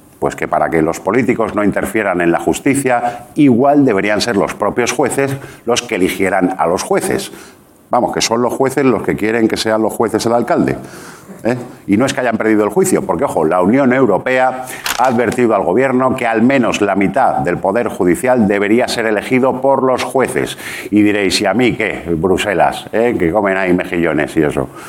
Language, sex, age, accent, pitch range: Japanese, male, 50-69, Spanish, 100-130 Hz